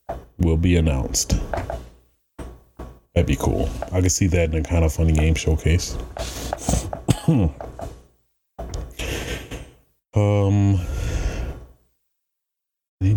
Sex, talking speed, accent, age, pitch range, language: male, 85 wpm, American, 30-49, 70-95 Hz, English